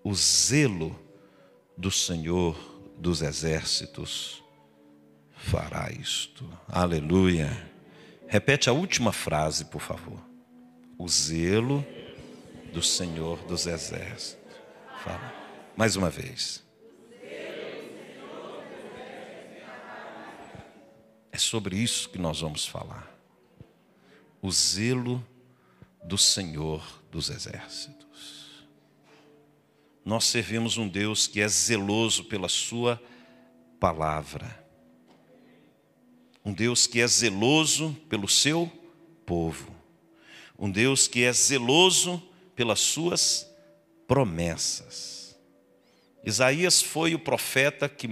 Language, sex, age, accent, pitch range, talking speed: Portuguese, male, 60-79, Brazilian, 80-130 Hz, 95 wpm